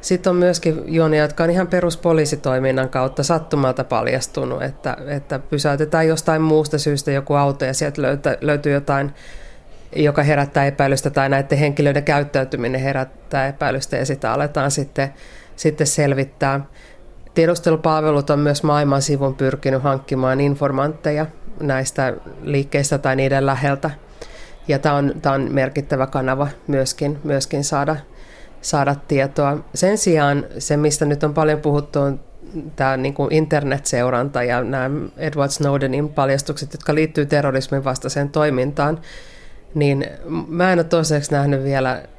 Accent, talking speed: native, 130 wpm